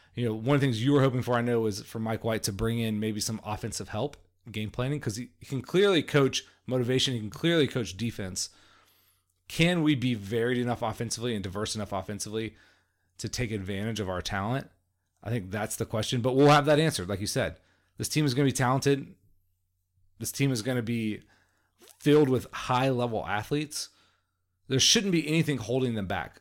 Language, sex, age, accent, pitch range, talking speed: English, male, 30-49, American, 105-130 Hz, 200 wpm